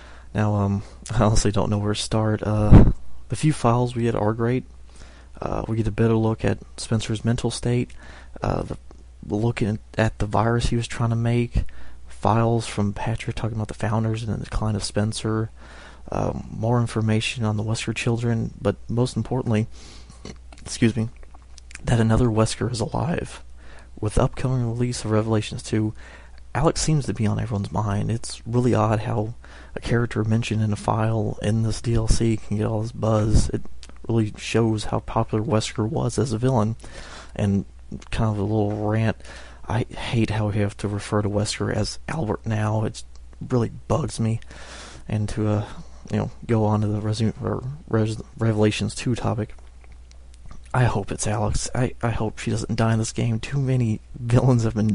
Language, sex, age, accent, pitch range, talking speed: English, male, 30-49, American, 100-115 Hz, 180 wpm